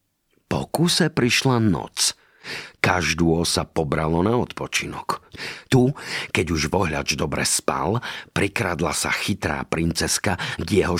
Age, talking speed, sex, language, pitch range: 50-69, 110 wpm, male, Slovak, 85-120 Hz